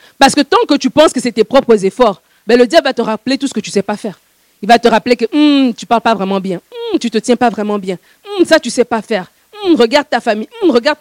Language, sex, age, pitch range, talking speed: French, female, 50-69, 225-295 Hz, 295 wpm